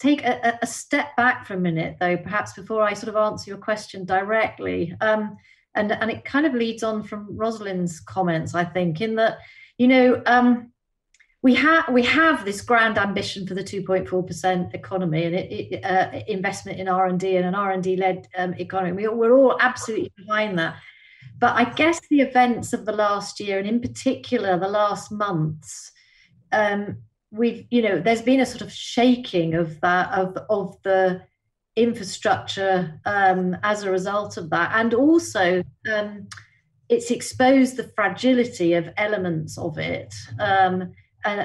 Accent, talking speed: British, 175 wpm